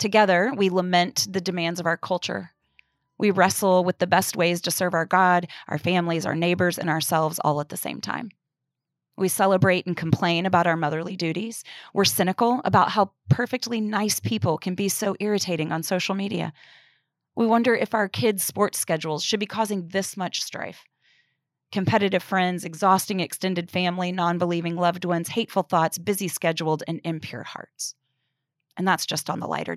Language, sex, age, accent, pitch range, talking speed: English, female, 30-49, American, 160-195 Hz, 170 wpm